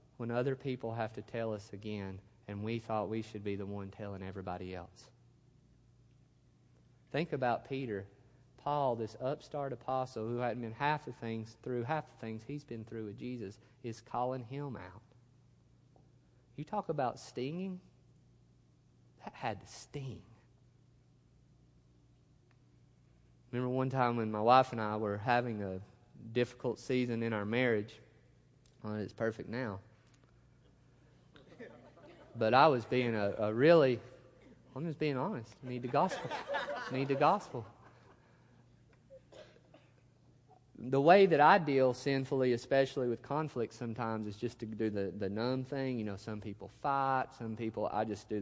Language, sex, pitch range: English, male, 105-130 Hz